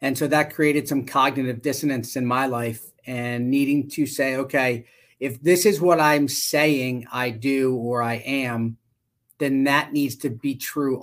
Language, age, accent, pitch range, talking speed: English, 40-59, American, 125-155 Hz, 175 wpm